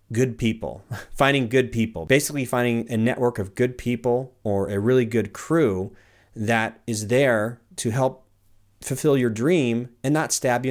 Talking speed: 165 wpm